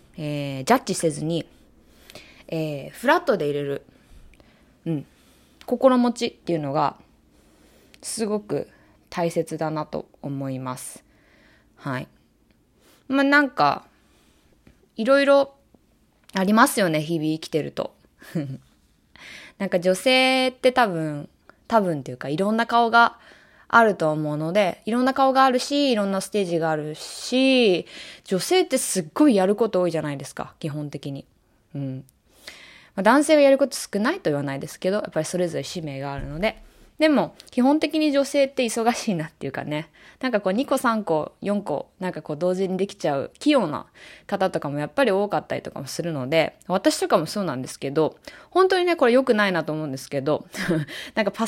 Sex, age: female, 20-39